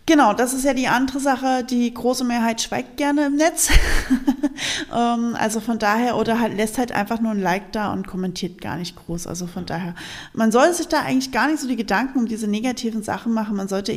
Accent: German